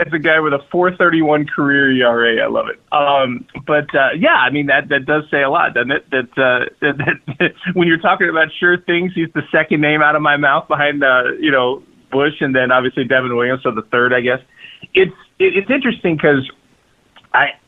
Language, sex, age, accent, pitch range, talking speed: English, male, 30-49, American, 125-155 Hz, 215 wpm